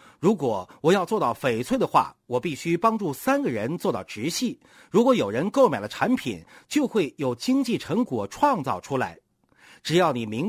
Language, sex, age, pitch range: Chinese, male, 50-69, 155-255 Hz